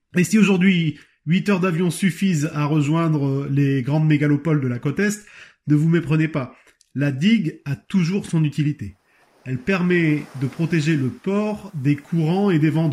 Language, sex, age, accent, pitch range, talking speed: French, male, 30-49, French, 150-190 Hz, 170 wpm